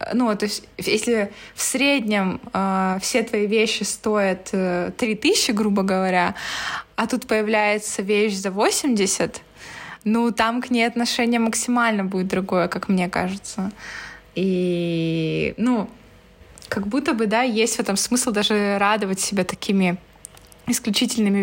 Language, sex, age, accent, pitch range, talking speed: Russian, female, 20-39, native, 195-225 Hz, 130 wpm